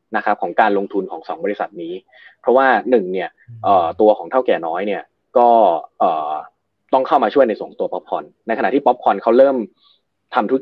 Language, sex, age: Thai, male, 20-39